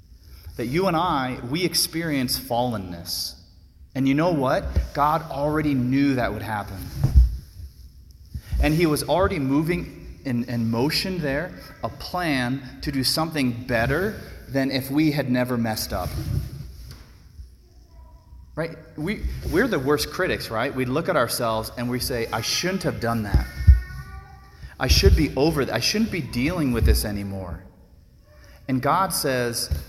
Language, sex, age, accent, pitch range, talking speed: English, male, 30-49, American, 85-140 Hz, 145 wpm